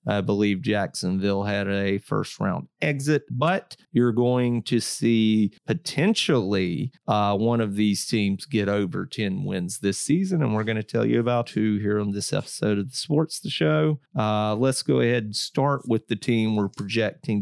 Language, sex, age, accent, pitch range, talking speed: English, male, 30-49, American, 105-130 Hz, 185 wpm